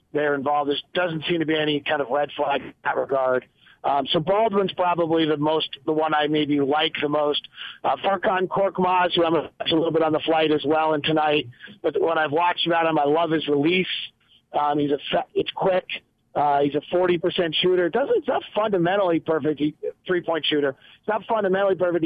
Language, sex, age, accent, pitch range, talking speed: English, male, 40-59, American, 150-175 Hz, 210 wpm